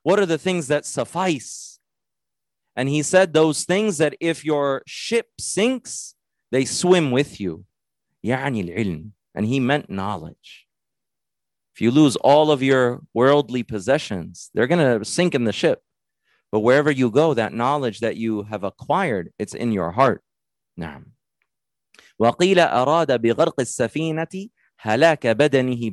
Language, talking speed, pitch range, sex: English, 125 wpm, 110-160 Hz, male